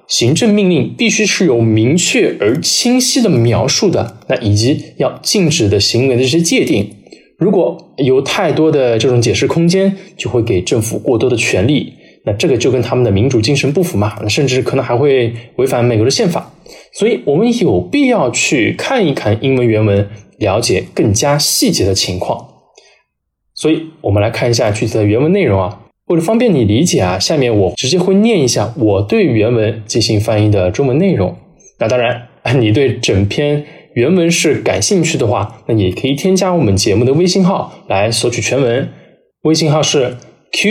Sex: male